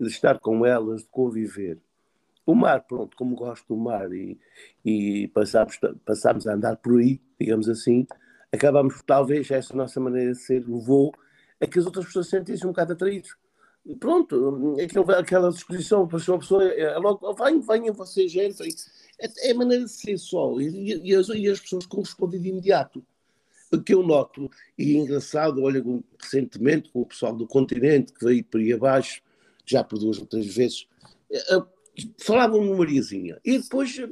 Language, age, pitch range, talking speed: Portuguese, 50-69, 135-225 Hz, 180 wpm